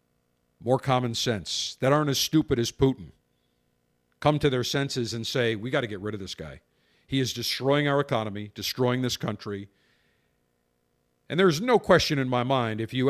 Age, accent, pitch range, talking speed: 50-69, American, 100-145 Hz, 185 wpm